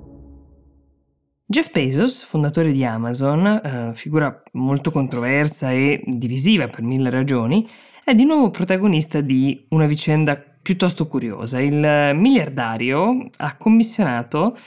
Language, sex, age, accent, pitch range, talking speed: Italian, female, 20-39, native, 140-195 Hz, 110 wpm